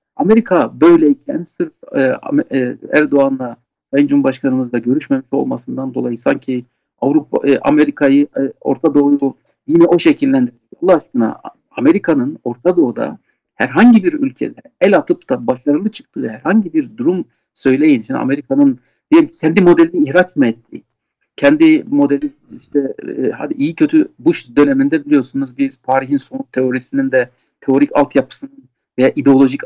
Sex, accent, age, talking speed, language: male, native, 60-79, 130 wpm, Turkish